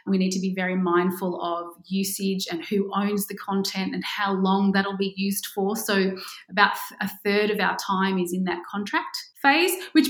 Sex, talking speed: female, 195 wpm